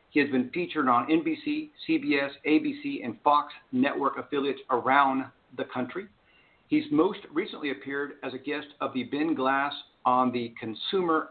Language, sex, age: English, male, 50-69